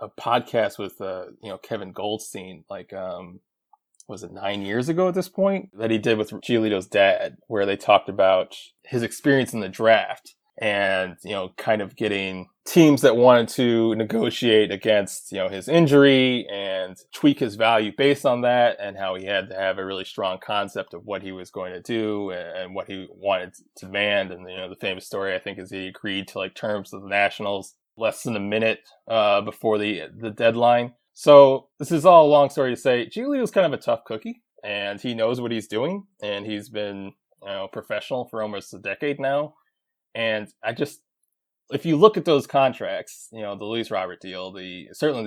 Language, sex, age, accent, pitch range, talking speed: English, male, 20-39, American, 100-125 Hz, 205 wpm